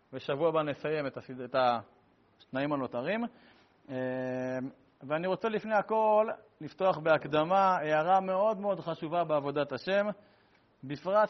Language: Hebrew